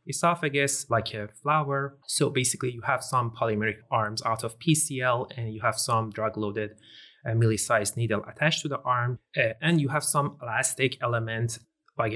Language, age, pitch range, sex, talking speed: English, 30-49, 110-140 Hz, male, 170 wpm